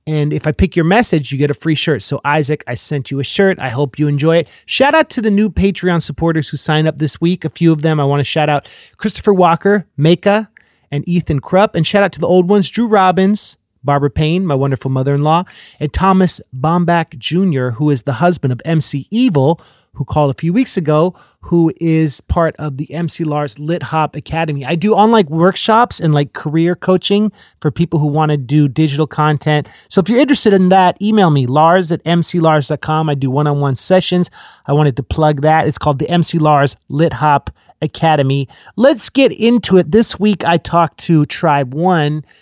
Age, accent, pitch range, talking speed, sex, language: 30-49, American, 145-180 Hz, 205 wpm, male, English